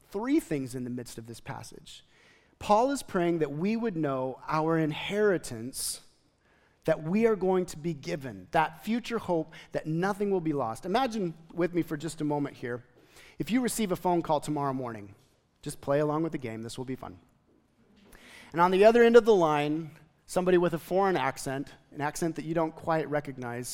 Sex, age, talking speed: male, 30-49, 195 wpm